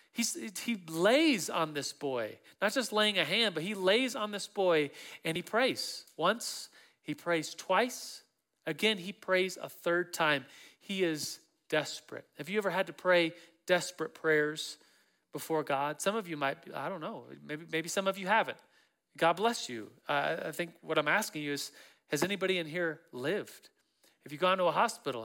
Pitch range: 165-225 Hz